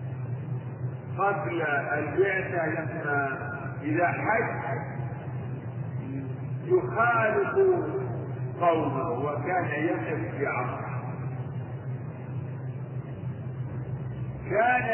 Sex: male